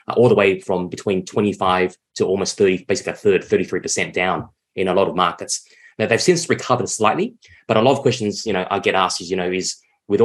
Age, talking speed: 20-39, 230 wpm